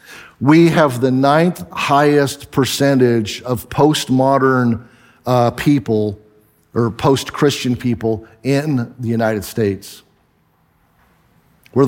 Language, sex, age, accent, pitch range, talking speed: English, male, 50-69, American, 125-150 Hz, 90 wpm